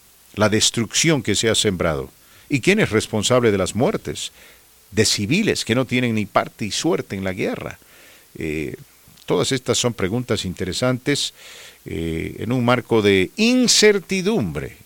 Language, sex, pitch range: English, male, 85-120 Hz